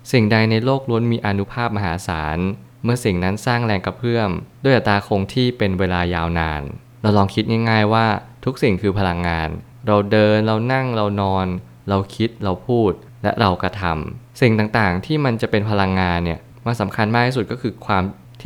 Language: Thai